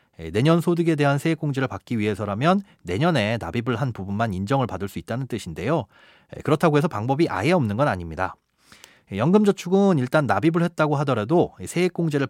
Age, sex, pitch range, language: 30-49, male, 110-165 Hz, Korean